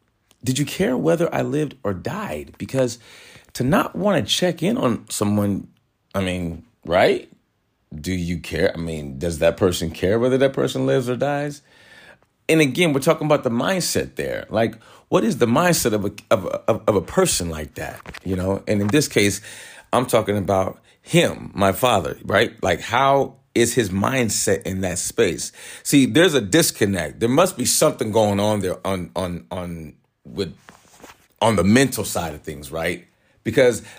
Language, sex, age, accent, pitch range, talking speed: English, male, 40-59, American, 90-130 Hz, 180 wpm